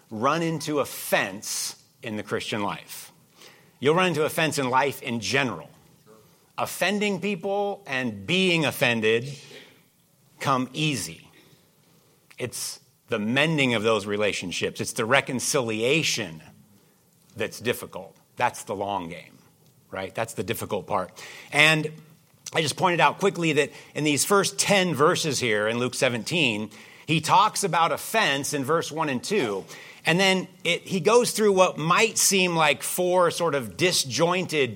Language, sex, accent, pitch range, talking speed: English, male, American, 130-175 Hz, 140 wpm